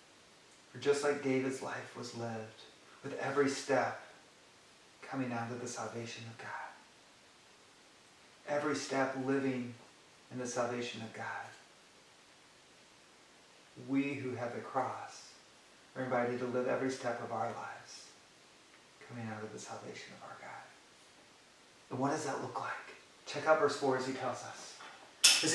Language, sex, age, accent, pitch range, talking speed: English, male, 40-59, American, 125-155 Hz, 145 wpm